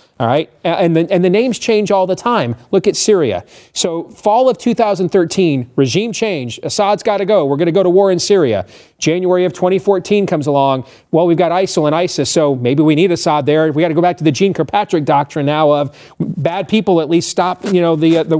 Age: 40-59